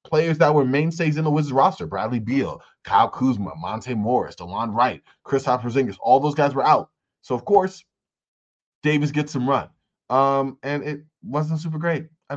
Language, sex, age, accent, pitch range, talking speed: English, male, 20-39, American, 115-145 Hz, 180 wpm